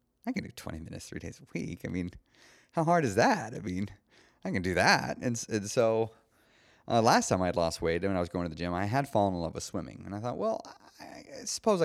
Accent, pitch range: American, 90-120 Hz